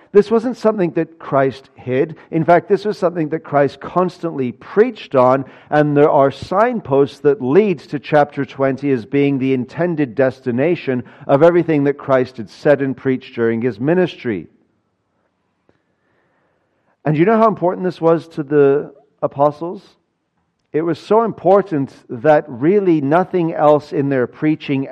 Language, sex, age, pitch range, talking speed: English, male, 50-69, 115-155 Hz, 150 wpm